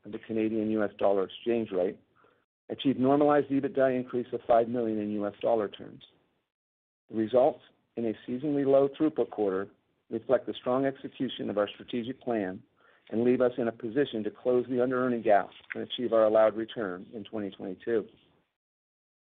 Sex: male